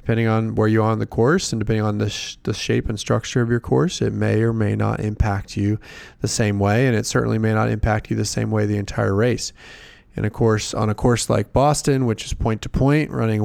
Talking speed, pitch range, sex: 250 wpm, 105-125 Hz, male